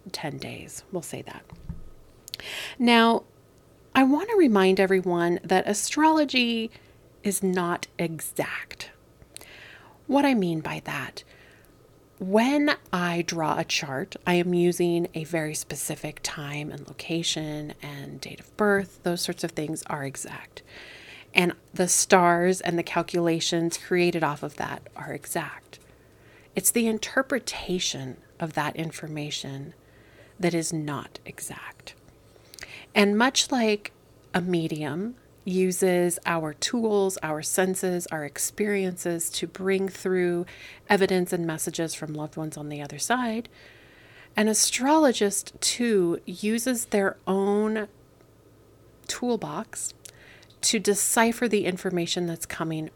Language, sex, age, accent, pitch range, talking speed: English, female, 30-49, American, 155-205 Hz, 120 wpm